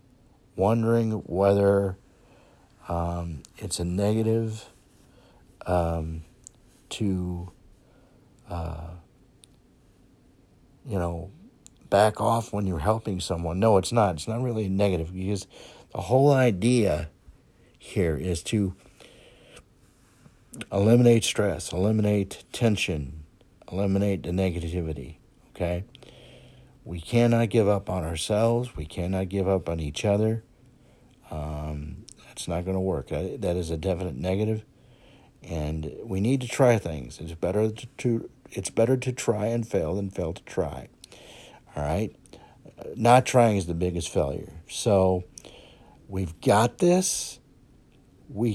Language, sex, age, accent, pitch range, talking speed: English, male, 60-79, American, 90-120 Hz, 115 wpm